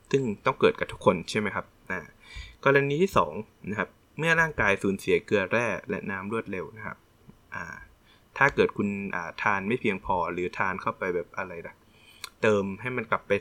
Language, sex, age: English, male, 20-39